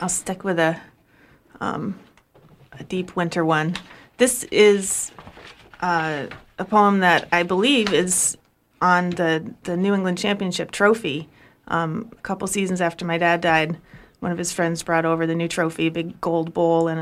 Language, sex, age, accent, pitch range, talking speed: English, female, 30-49, American, 165-195 Hz, 165 wpm